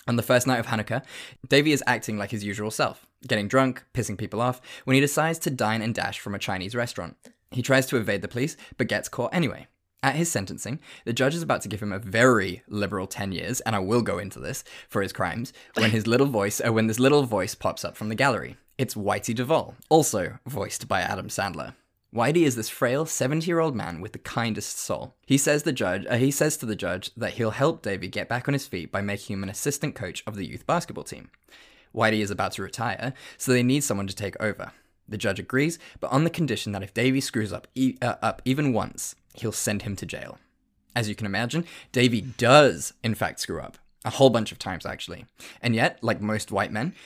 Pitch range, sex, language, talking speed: 105-135 Hz, male, English, 230 wpm